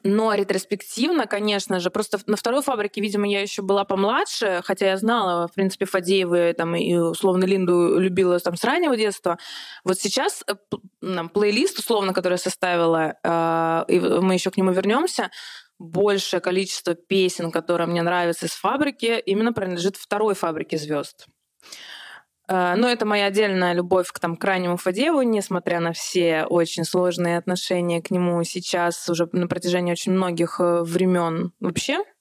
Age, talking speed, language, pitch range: 20-39, 145 wpm, Russian, 175-205 Hz